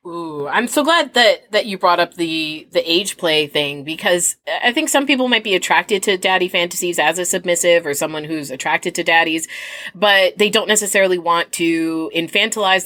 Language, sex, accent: English, female, American